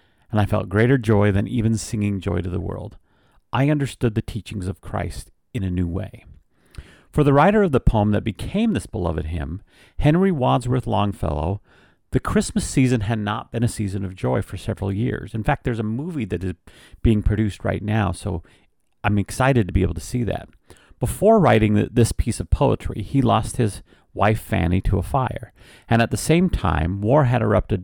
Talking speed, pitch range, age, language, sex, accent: 195 wpm, 95-120 Hz, 40-59, English, male, American